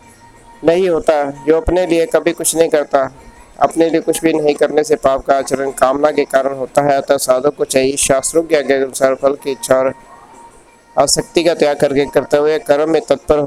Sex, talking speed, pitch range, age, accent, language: male, 100 wpm, 145-160 Hz, 50-69, native, Hindi